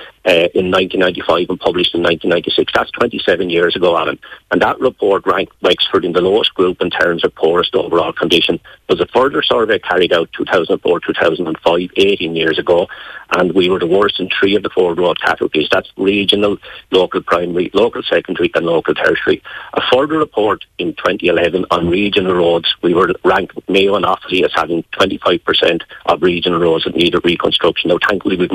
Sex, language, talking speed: male, English, 180 wpm